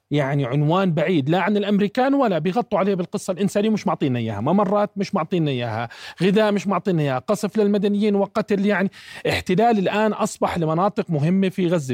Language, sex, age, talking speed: Arabic, male, 40-59, 165 wpm